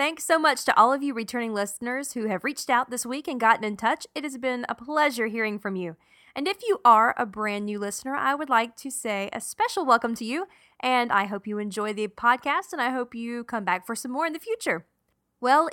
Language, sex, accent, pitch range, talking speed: English, female, American, 205-270 Hz, 250 wpm